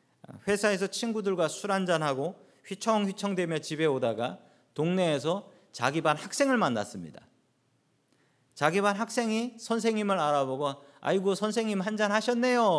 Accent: native